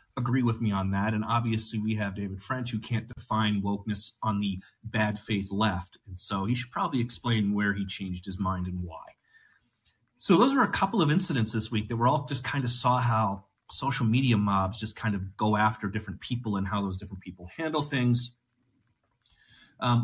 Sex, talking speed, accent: male, 205 wpm, American